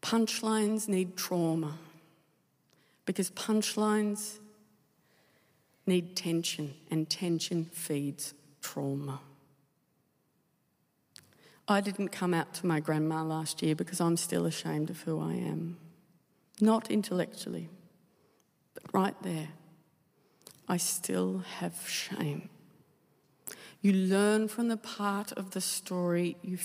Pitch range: 155-200 Hz